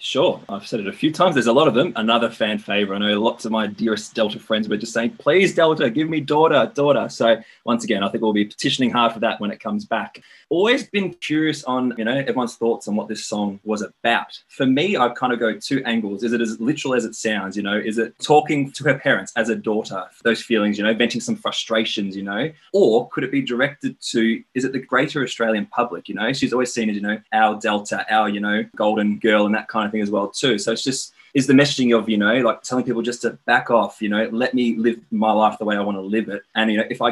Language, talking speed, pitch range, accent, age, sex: English, 265 wpm, 105-120 Hz, Australian, 20-39, male